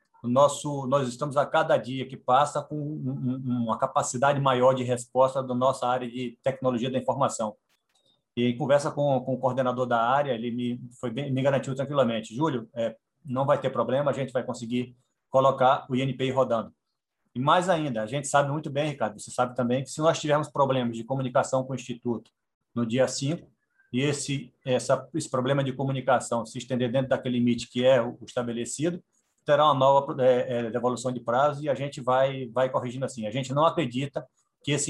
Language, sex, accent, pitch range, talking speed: Portuguese, male, Brazilian, 125-145 Hz, 190 wpm